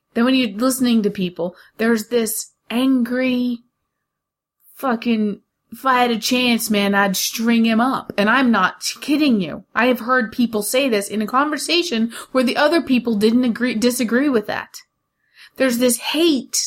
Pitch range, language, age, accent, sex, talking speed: 210-265 Hz, English, 30-49, American, female, 165 wpm